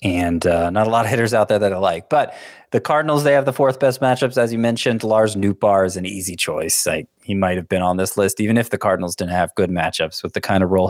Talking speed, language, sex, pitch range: 280 wpm, English, male, 100-130 Hz